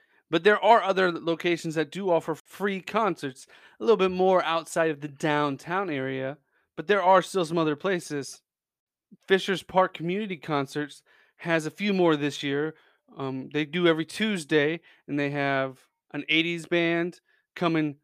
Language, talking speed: English, 160 wpm